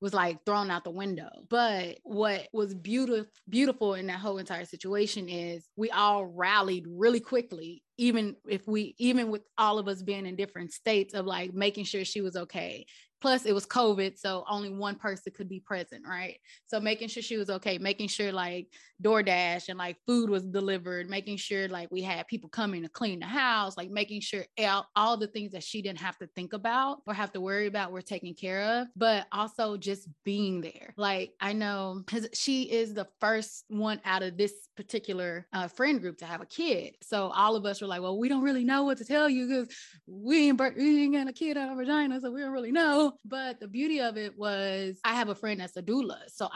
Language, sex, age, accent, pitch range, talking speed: English, female, 20-39, American, 190-225 Hz, 225 wpm